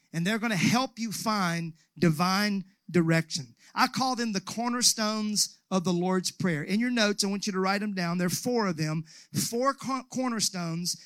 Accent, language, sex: American, English, male